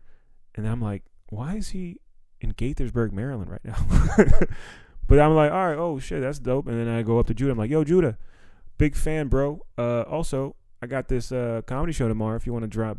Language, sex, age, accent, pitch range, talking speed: English, male, 20-39, American, 100-125 Hz, 220 wpm